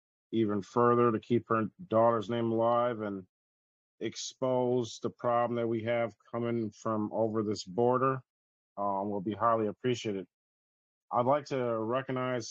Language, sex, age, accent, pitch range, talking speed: English, male, 40-59, American, 115-130 Hz, 140 wpm